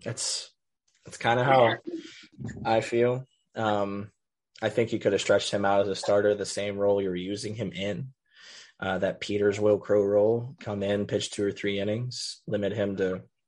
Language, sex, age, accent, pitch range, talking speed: English, male, 20-39, American, 100-120 Hz, 190 wpm